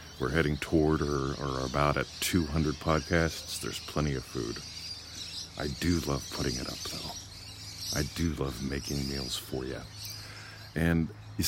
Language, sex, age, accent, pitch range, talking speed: English, male, 50-69, American, 70-100 Hz, 150 wpm